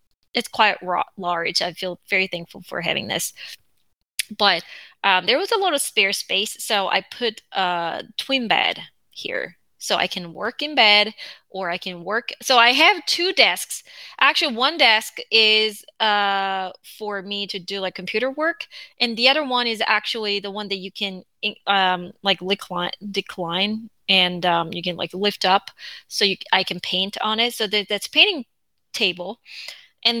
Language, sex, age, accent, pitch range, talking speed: English, female, 20-39, American, 190-245 Hz, 170 wpm